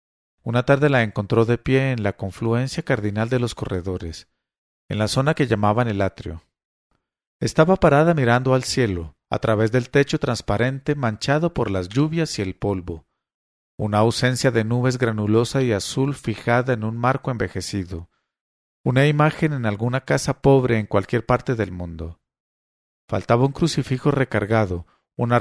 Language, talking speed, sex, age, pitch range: English, 155 wpm, male, 40-59, 100-125 Hz